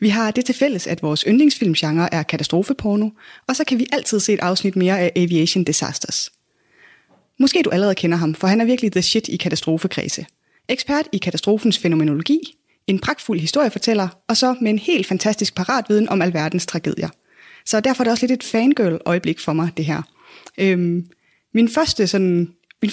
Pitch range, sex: 170-225 Hz, female